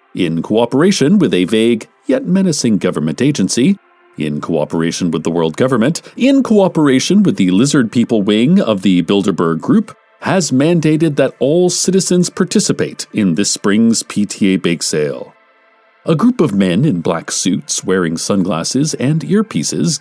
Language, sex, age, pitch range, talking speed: English, male, 40-59, 115-190 Hz, 145 wpm